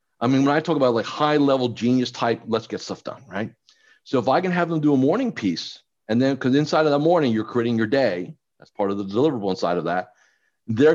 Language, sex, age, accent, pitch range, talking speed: English, male, 40-59, American, 125-190 Hz, 250 wpm